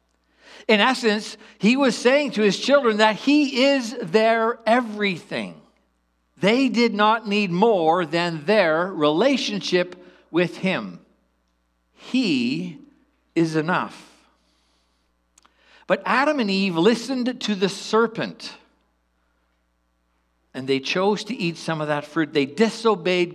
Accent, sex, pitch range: American, male, 145-220 Hz